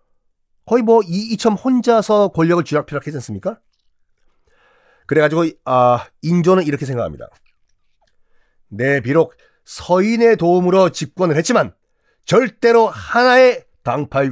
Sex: male